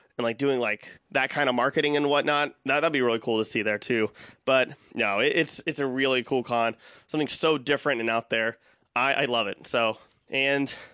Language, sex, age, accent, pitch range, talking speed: English, male, 20-39, American, 120-150 Hz, 210 wpm